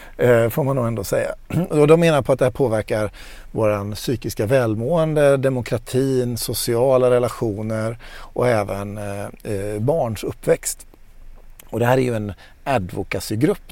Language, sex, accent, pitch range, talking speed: Swedish, male, native, 110-135 Hz, 130 wpm